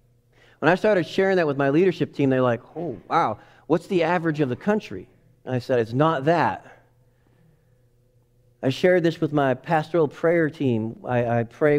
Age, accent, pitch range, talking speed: 40-59, American, 120-150 Hz, 190 wpm